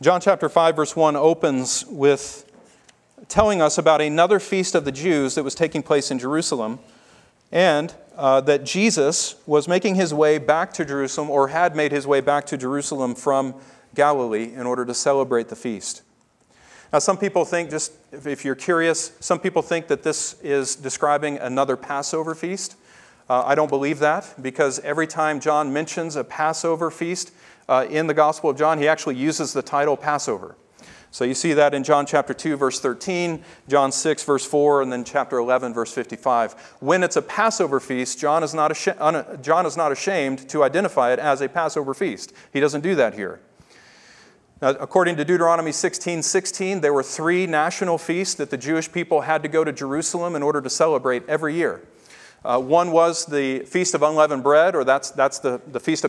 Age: 40-59